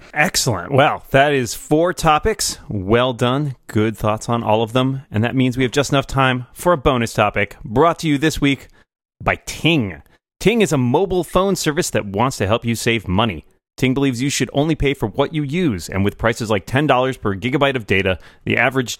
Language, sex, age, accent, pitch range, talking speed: English, male, 30-49, American, 105-145 Hz, 215 wpm